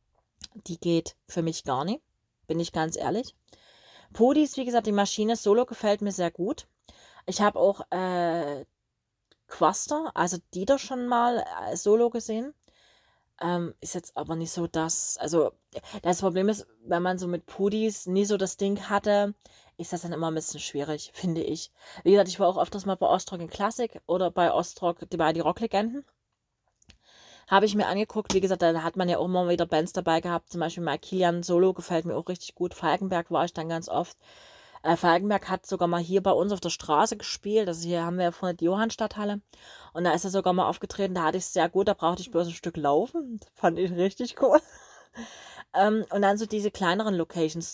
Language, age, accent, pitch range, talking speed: German, 30-49, German, 170-210 Hz, 205 wpm